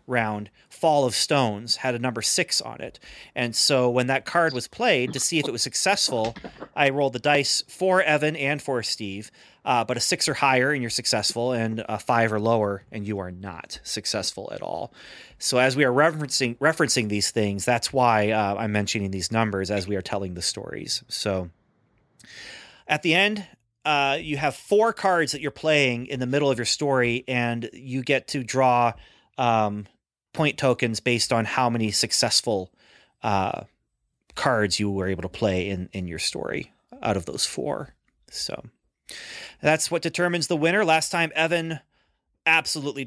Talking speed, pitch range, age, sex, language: 180 wpm, 115-150 Hz, 30-49, male, English